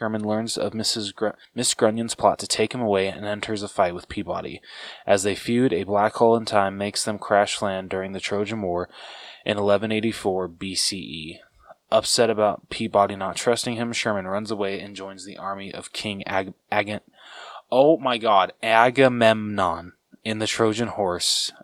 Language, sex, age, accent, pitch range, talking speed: English, male, 20-39, American, 95-110 Hz, 155 wpm